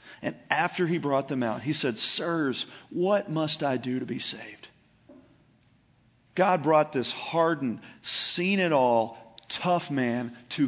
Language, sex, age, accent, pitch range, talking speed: English, male, 40-59, American, 125-165 Hz, 135 wpm